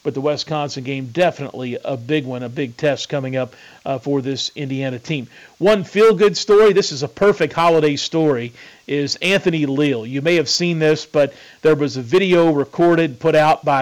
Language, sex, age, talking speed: English, male, 40-59, 190 wpm